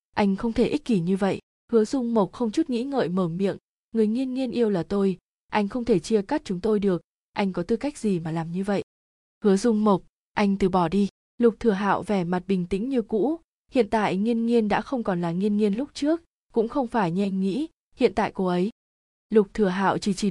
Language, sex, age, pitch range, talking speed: Vietnamese, female, 20-39, 185-225 Hz, 240 wpm